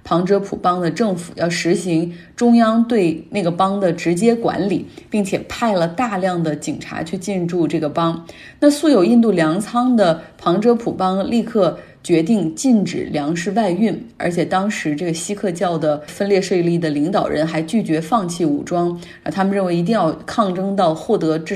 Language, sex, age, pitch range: Chinese, female, 20-39, 165-215 Hz